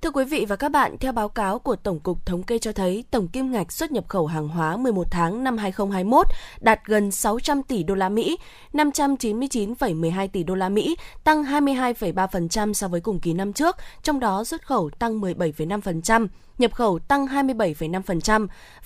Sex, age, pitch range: female, 20-39, 185-260 Hz